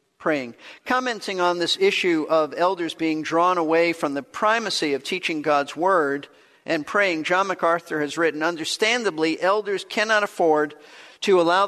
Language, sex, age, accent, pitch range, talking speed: English, male, 50-69, American, 160-210 Hz, 150 wpm